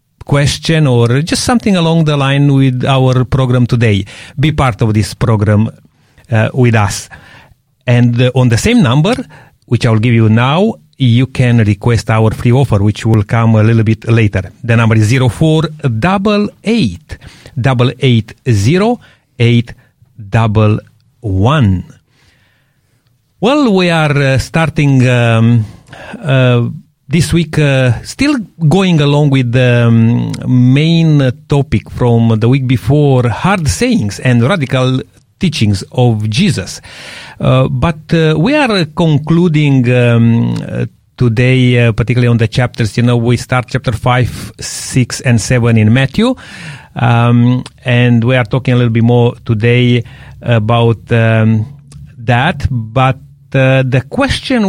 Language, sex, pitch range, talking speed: English, male, 115-145 Hz, 140 wpm